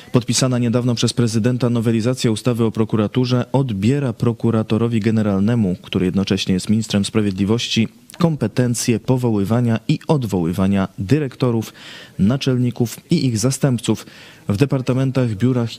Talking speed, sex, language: 105 wpm, male, Polish